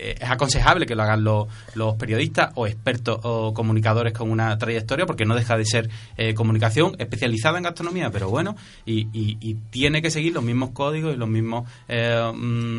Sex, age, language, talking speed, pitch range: male, 30-49, Spanish, 190 wpm, 115-145 Hz